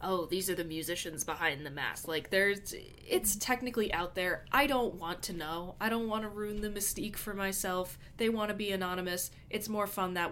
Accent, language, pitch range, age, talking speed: American, English, 155-195 Hz, 20-39, 215 wpm